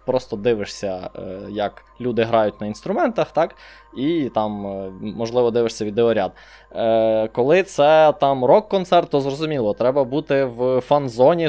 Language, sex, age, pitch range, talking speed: Russian, male, 20-39, 115-155 Hz, 120 wpm